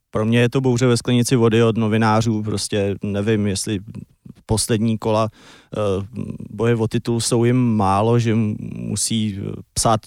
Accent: native